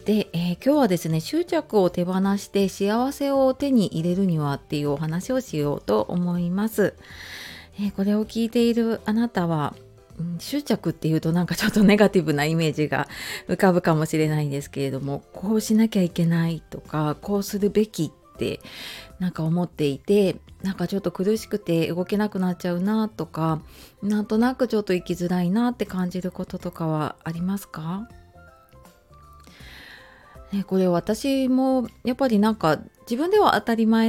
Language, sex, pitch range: Japanese, female, 160-210 Hz